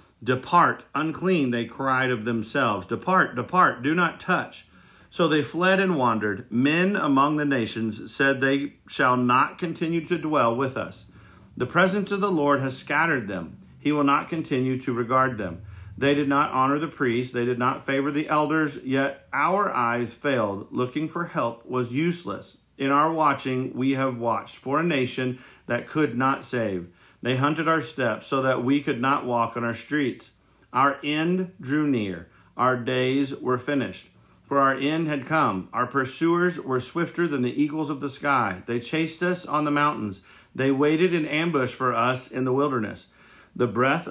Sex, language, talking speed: male, English, 180 wpm